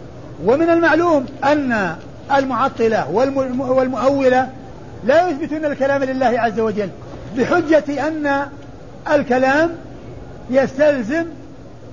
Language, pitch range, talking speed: Arabic, 245-310 Hz, 75 wpm